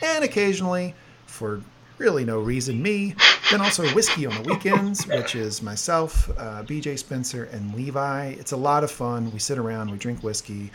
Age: 40-59